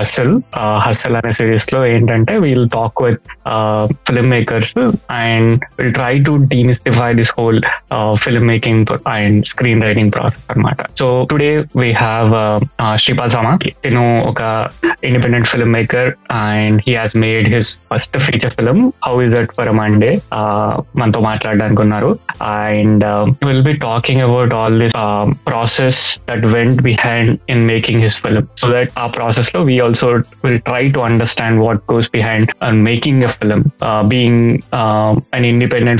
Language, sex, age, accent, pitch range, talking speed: Telugu, male, 20-39, native, 110-125 Hz, 75 wpm